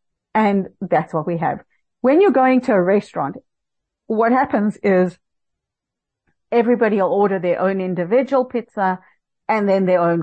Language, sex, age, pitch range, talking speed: English, female, 50-69, 180-235 Hz, 145 wpm